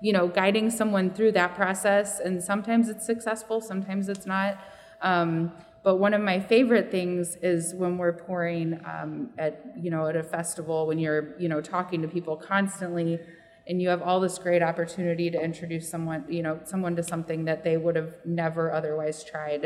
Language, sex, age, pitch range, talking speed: English, female, 20-39, 165-185 Hz, 190 wpm